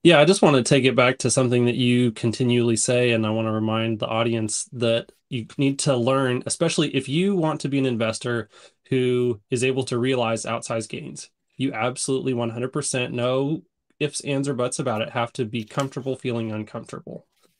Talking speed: 195 wpm